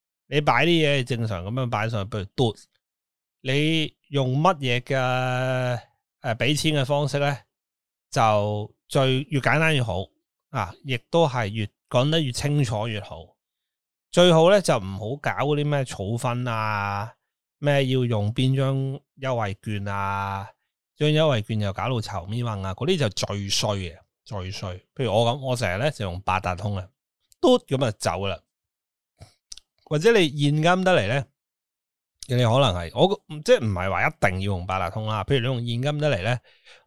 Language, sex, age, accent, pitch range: Chinese, male, 20-39, native, 105-140 Hz